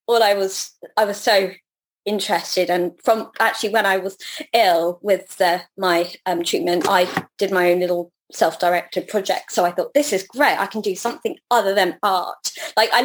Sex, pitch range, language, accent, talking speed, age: female, 180-210 Hz, English, British, 190 wpm, 20-39